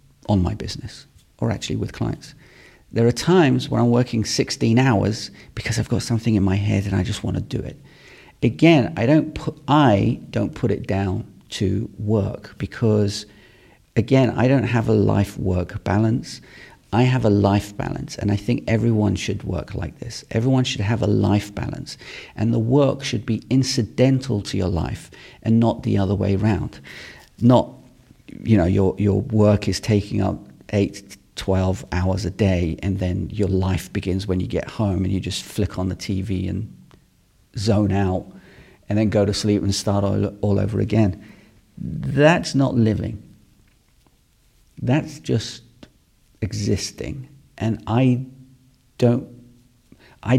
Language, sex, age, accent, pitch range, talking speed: English, male, 40-59, British, 100-120 Hz, 160 wpm